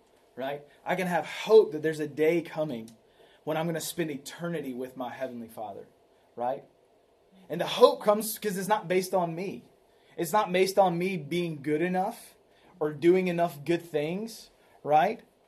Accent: American